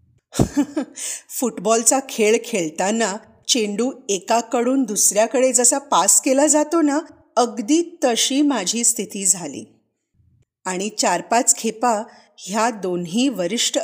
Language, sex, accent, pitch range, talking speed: Marathi, female, native, 190-270 Hz, 100 wpm